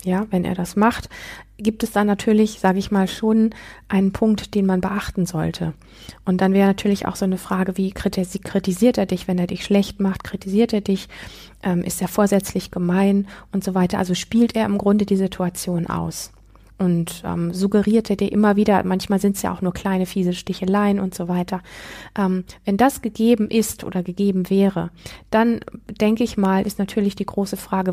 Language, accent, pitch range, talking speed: German, German, 180-205 Hz, 195 wpm